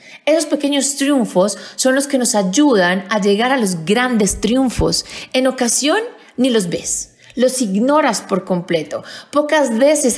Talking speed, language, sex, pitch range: 145 wpm, Spanish, female, 185-260 Hz